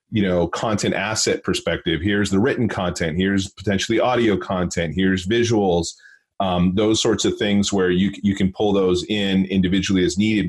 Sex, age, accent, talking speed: male, 30-49, American, 170 wpm